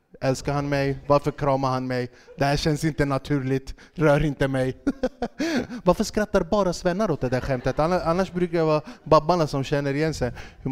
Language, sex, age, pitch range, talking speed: Swedish, male, 20-39, 135-180 Hz, 180 wpm